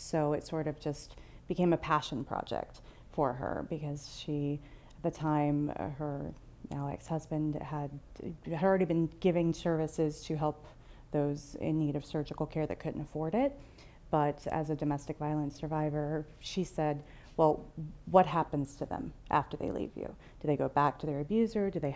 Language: English